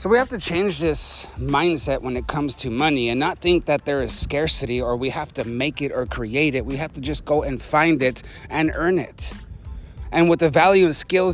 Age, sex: 30-49, male